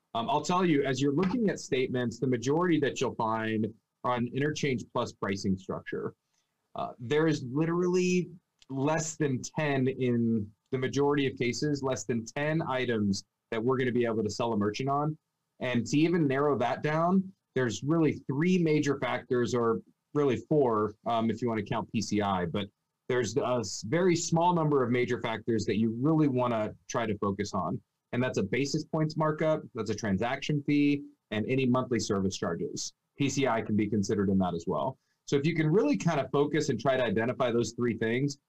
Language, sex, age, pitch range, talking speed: English, male, 30-49, 110-150 Hz, 190 wpm